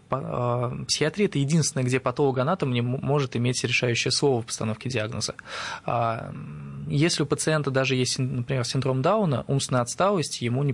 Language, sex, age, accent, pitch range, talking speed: Russian, male, 20-39, native, 120-150 Hz, 140 wpm